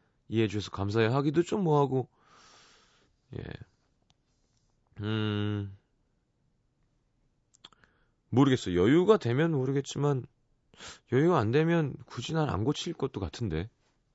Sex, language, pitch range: male, Korean, 100-140 Hz